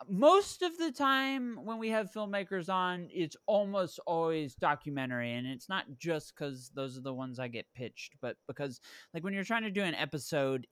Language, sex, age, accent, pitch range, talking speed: English, male, 20-39, American, 125-200 Hz, 195 wpm